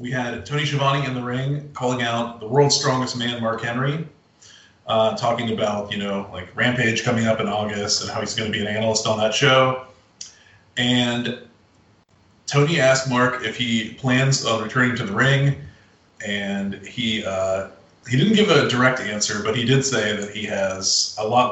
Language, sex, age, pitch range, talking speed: English, male, 30-49, 105-130 Hz, 185 wpm